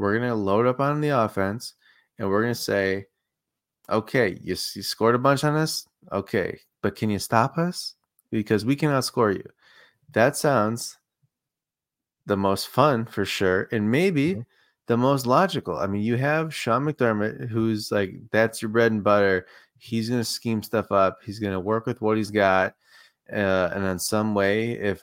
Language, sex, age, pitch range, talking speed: English, male, 20-39, 105-125 Hz, 185 wpm